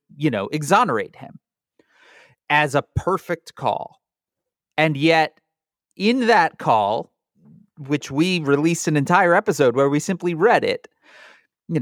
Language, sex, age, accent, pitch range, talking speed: English, male, 30-49, American, 120-170 Hz, 125 wpm